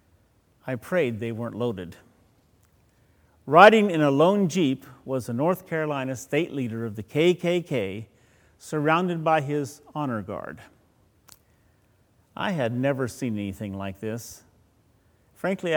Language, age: English, 50-69